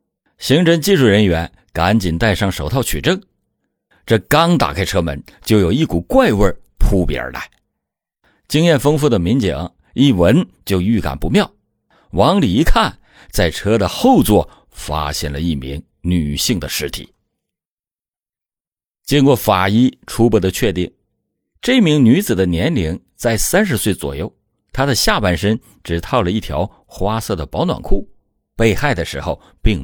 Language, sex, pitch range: Chinese, male, 85-125 Hz